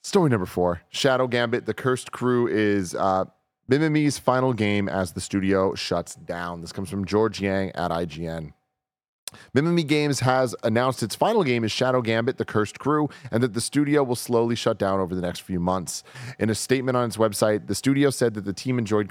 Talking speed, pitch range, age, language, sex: 200 wpm, 95-125 Hz, 30-49, English, male